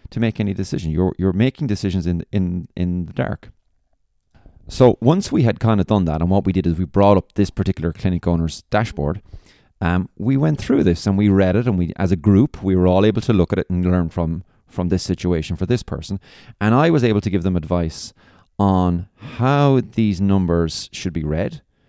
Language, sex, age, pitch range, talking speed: English, male, 30-49, 85-105 Hz, 220 wpm